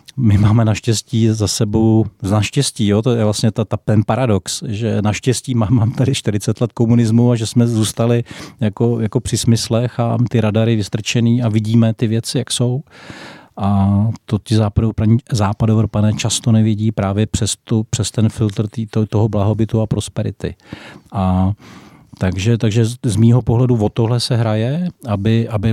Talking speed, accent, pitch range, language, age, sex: 165 wpm, native, 105-115 Hz, Czech, 40-59, male